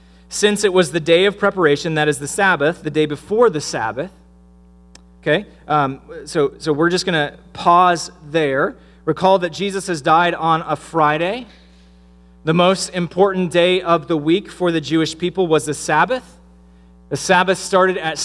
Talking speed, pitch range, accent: 170 wpm, 150-190 Hz, American